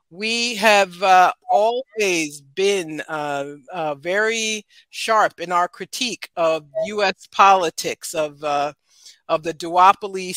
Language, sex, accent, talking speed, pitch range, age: English, female, American, 115 wpm, 170-225 Hz, 50-69